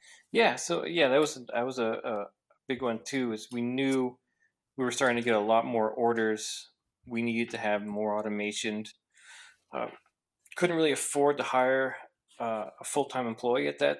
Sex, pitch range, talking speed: male, 105-125 Hz, 180 wpm